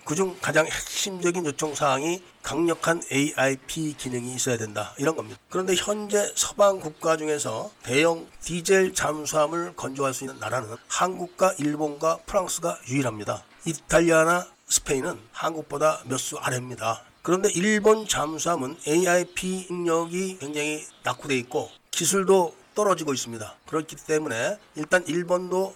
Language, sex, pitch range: Korean, male, 140-180 Hz